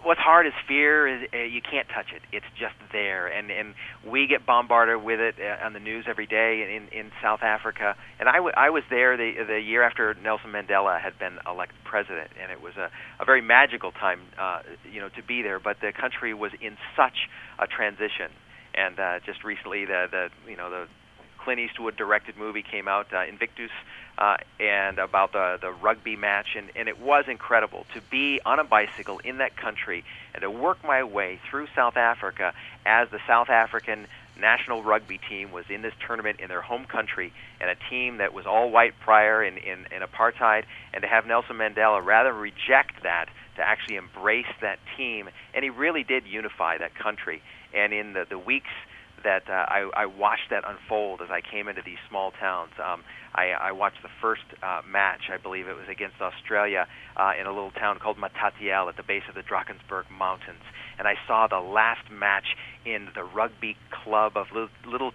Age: 40-59